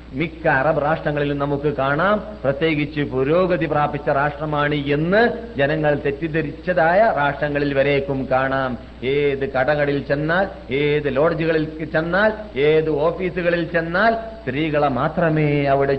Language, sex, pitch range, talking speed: Malayalam, male, 120-155 Hz, 100 wpm